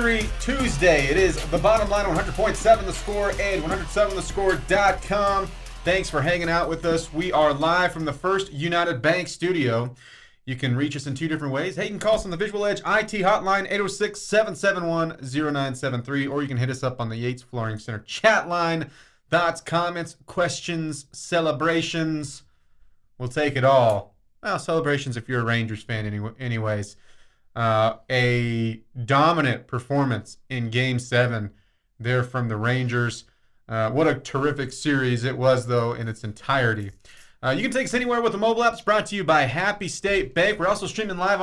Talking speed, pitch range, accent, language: 170 wpm, 125-190 Hz, American, English